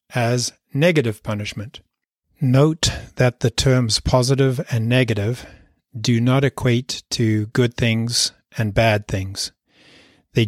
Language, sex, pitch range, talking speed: English, male, 110-130 Hz, 115 wpm